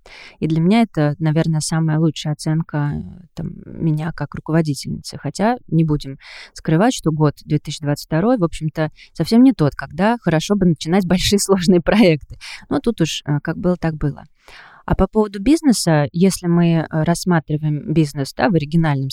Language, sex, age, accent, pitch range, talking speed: Russian, female, 20-39, native, 150-180 Hz, 145 wpm